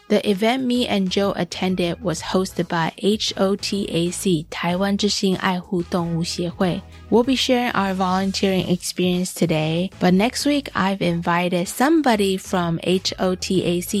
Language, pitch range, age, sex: Chinese, 175-205 Hz, 20-39, female